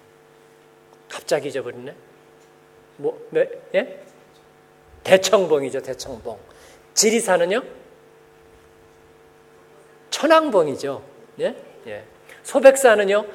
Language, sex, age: Korean, male, 40-59